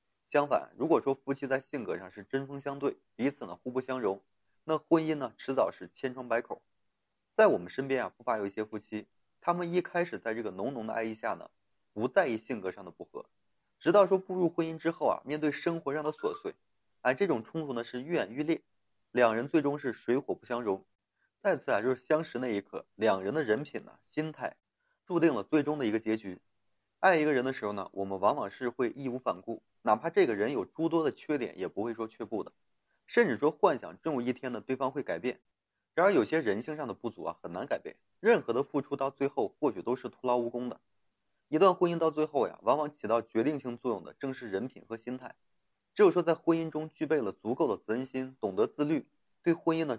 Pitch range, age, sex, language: 115-160 Hz, 20-39, male, Chinese